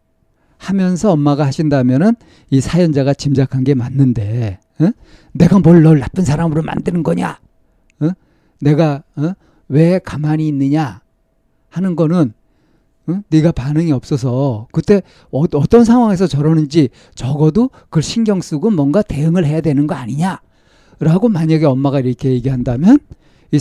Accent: native